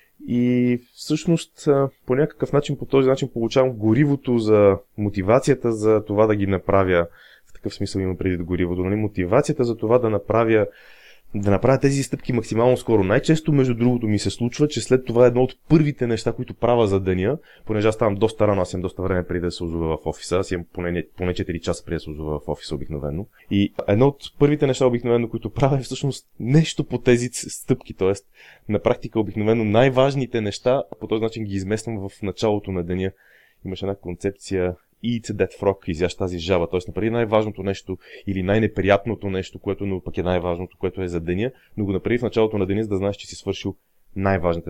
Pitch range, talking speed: 95-130 Hz, 195 wpm